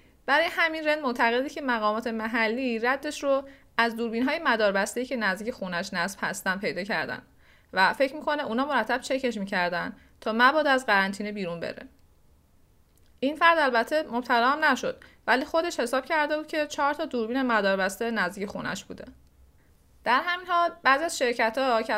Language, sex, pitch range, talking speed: Persian, female, 195-260 Hz, 155 wpm